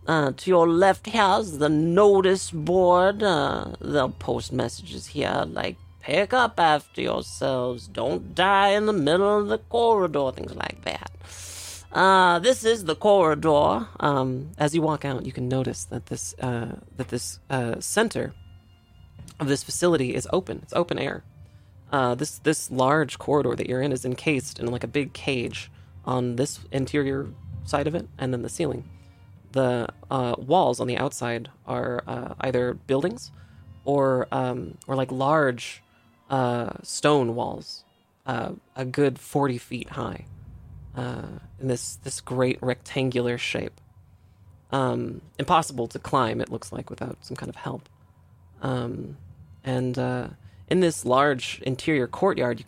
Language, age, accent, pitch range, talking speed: English, 30-49, American, 105-145 Hz, 155 wpm